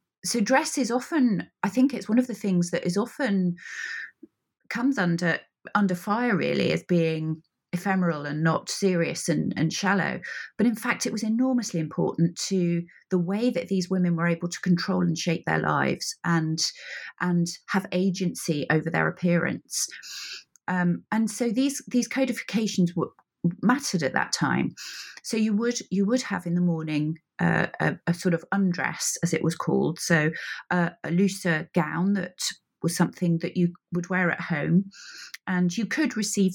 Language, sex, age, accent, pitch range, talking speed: English, female, 30-49, British, 170-210 Hz, 170 wpm